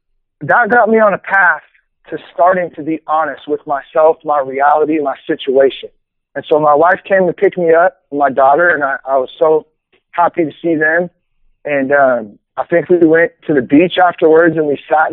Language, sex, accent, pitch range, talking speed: English, male, American, 145-180 Hz, 200 wpm